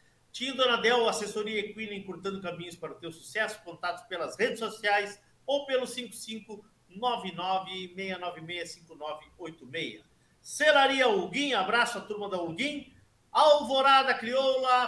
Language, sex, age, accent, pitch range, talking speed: Portuguese, male, 50-69, Brazilian, 165-235 Hz, 105 wpm